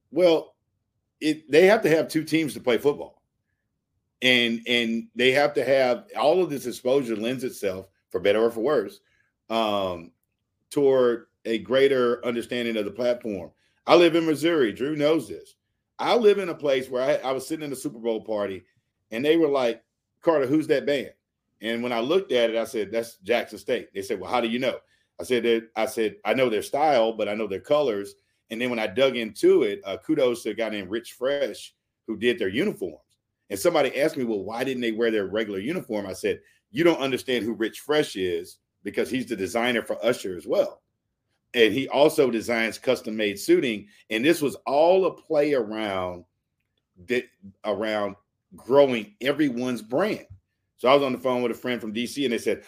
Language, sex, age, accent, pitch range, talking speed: English, male, 40-59, American, 110-145 Hz, 200 wpm